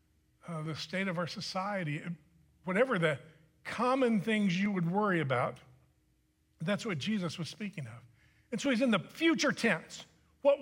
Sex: male